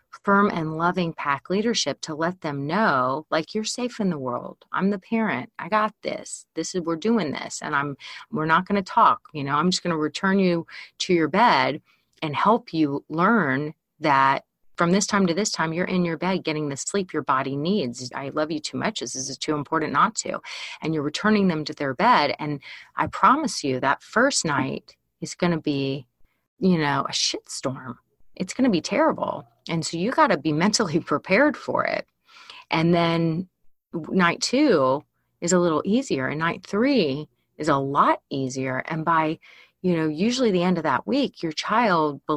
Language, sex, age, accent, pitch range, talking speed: English, female, 30-49, American, 150-200 Hz, 195 wpm